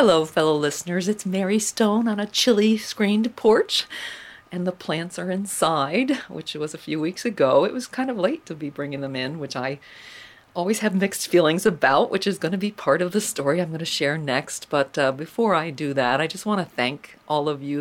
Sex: female